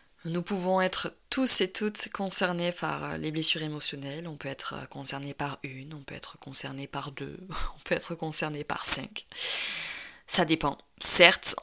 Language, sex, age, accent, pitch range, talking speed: French, female, 20-39, French, 145-175 Hz, 165 wpm